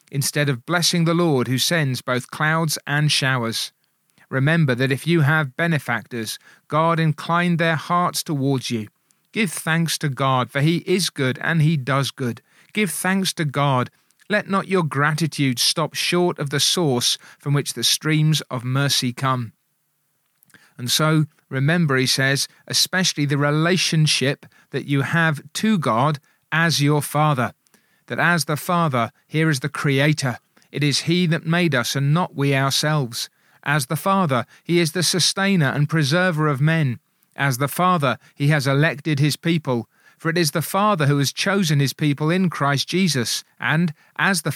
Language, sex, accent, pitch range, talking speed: English, male, British, 140-170 Hz, 165 wpm